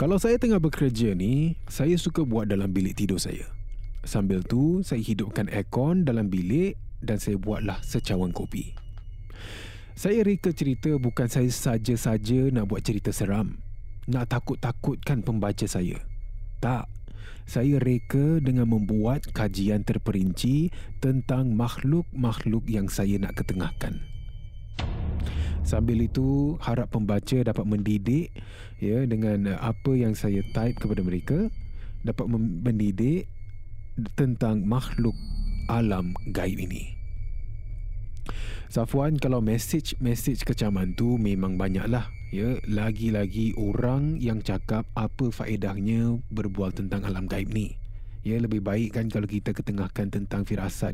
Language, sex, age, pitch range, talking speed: Malay, male, 30-49, 100-120 Hz, 120 wpm